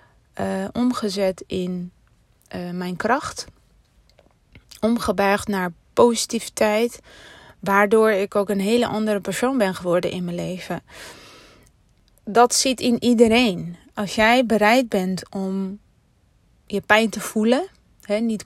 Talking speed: 115 wpm